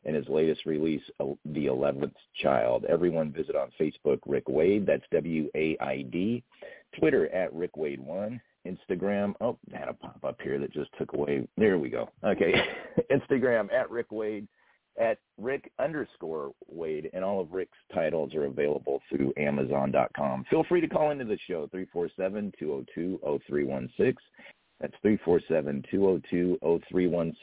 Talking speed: 135 wpm